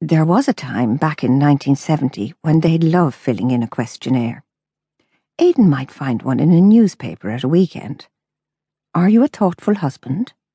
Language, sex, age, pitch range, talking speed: English, female, 60-79, 140-185 Hz, 165 wpm